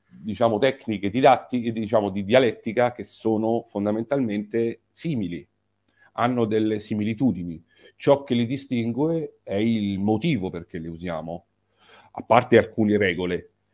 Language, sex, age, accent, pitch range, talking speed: Italian, male, 40-59, native, 100-125 Hz, 120 wpm